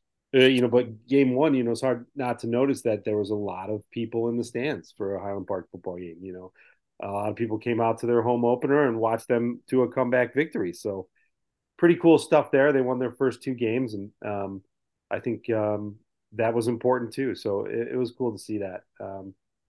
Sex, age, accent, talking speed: male, 40-59, American, 235 wpm